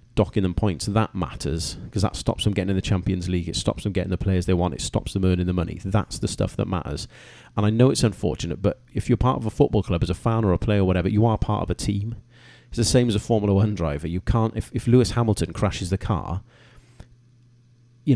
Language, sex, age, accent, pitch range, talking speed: English, male, 30-49, British, 95-115 Hz, 260 wpm